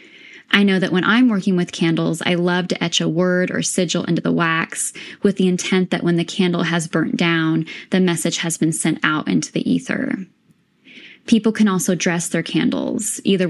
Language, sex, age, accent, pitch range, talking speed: English, female, 10-29, American, 175-225 Hz, 200 wpm